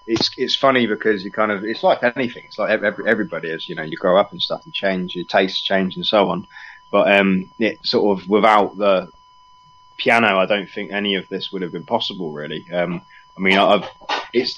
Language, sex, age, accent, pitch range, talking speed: English, male, 20-39, British, 95-120 Hz, 225 wpm